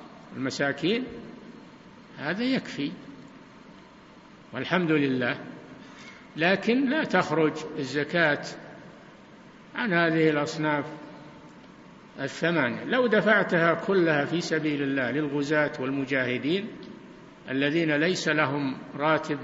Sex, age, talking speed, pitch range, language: male, 60-79, 75 wpm, 155-210 Hz, Arabic